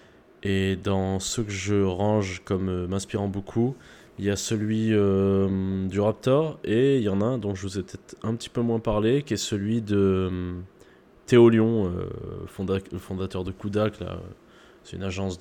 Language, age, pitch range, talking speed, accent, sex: French, 20-39, 95-110 Hz, 185 wpm, French, male